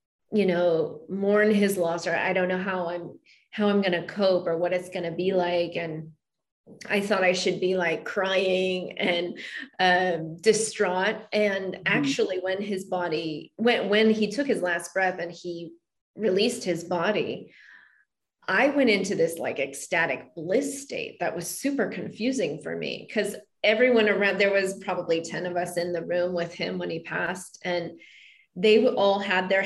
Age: 30-49